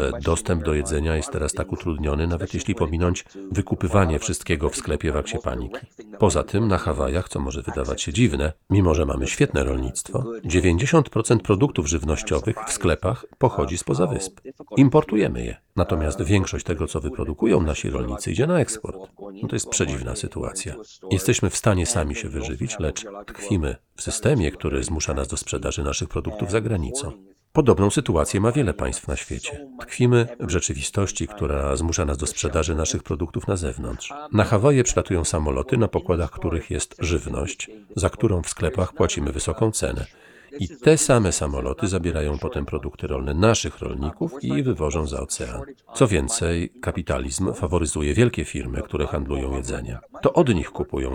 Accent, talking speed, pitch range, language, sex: native, 160 wpm, 75-105 Hz, Polish, male